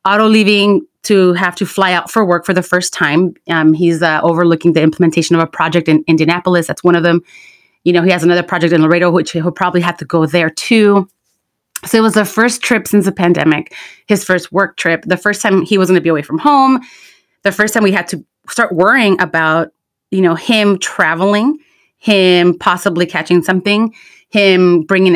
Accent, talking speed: American, 205 wpm